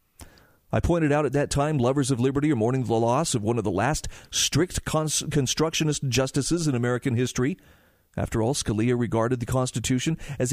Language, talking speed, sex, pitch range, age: English, 175 wpm, male, 120-155 Hz, 40-59